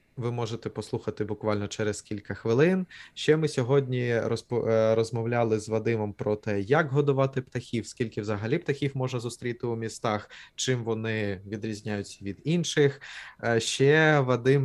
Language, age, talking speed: Ukrainian, 20-39, 135 wpm